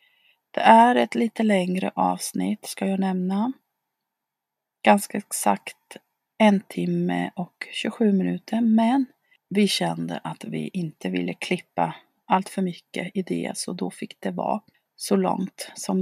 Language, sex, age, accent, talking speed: Swedish, female, 30-49, native, 140 wpm